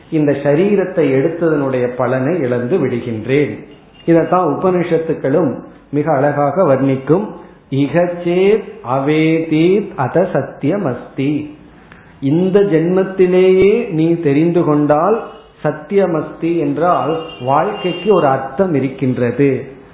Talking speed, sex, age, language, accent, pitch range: 65 wpm, male, 40-59, Tamil, native, 140-180 Hz